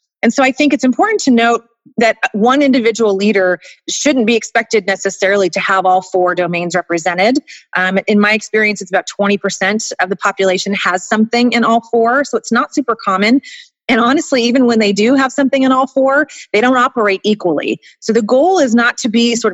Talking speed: 200 wpm